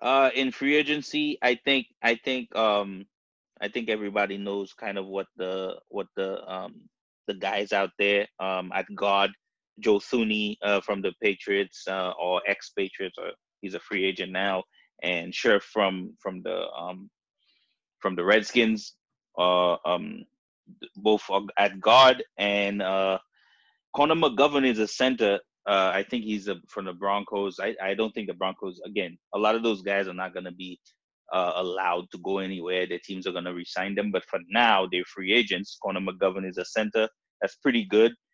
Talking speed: 180 wpm